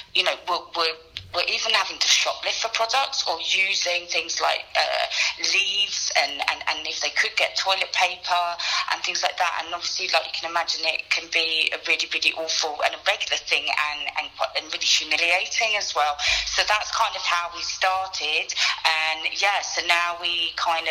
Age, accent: 30-49, British